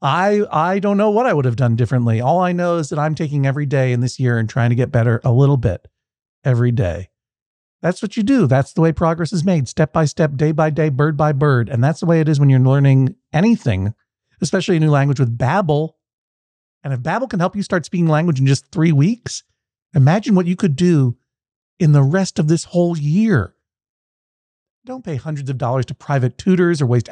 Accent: American